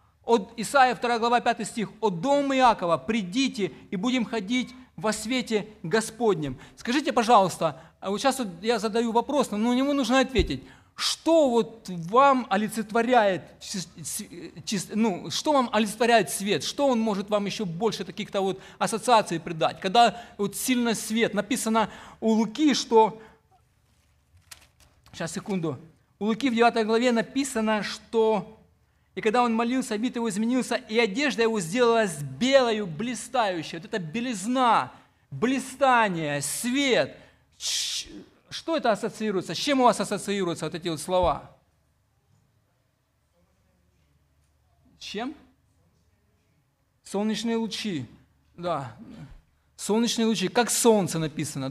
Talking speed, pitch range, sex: 120 wpm, 170-235 Hz, male